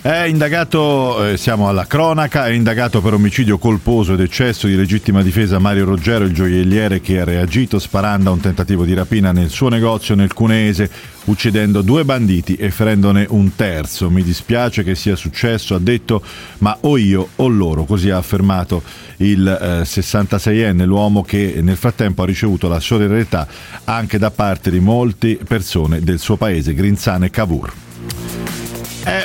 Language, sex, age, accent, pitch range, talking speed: Italian, male, 40-59, native, 95-120 Hz, 160 wpm